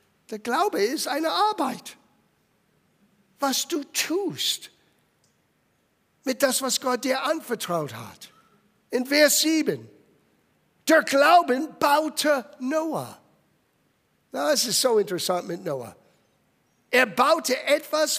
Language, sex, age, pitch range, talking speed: German, male, 60-79, 200-285 Hz, 100 wpm